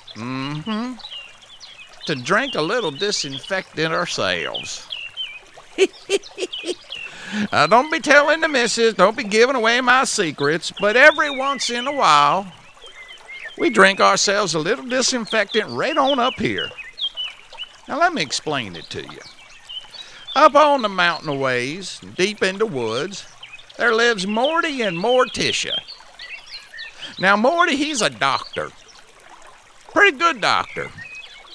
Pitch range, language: 185-280 Hz, English